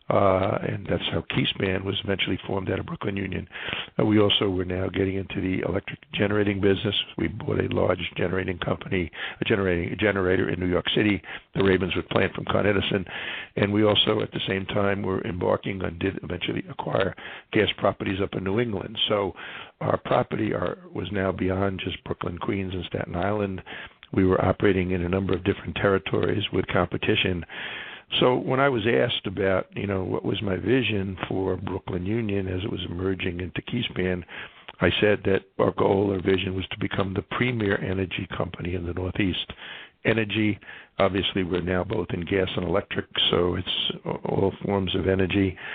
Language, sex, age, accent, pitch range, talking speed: English, male, 60-79, American, 95-100 Hz, 180 wpm